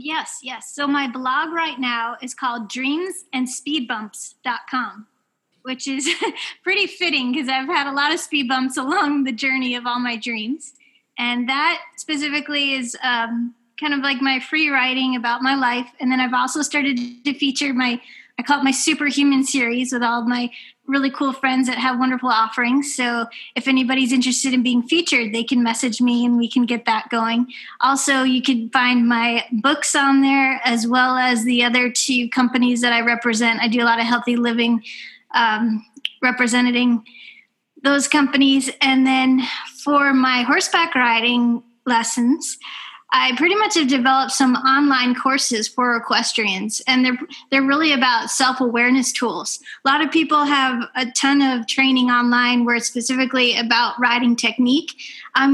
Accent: American